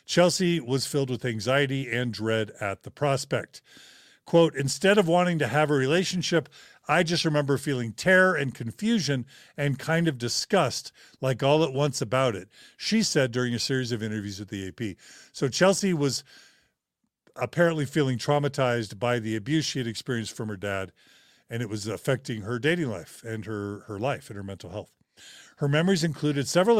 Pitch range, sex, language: 115-160 Hz, male, English